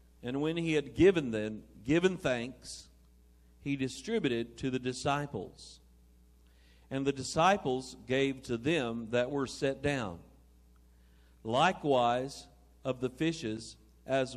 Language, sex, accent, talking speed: English, male, American, 115 wpm